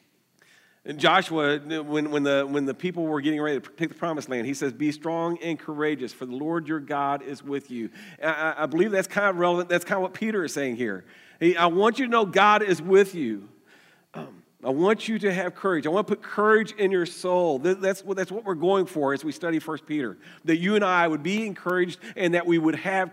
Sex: male